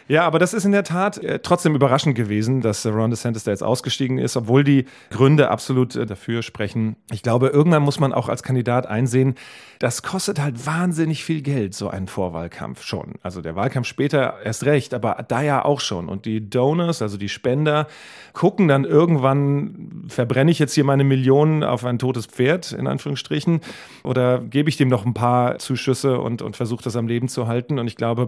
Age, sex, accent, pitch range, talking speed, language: 40-59, male, German, 110-135 Hz, 195 wpm, German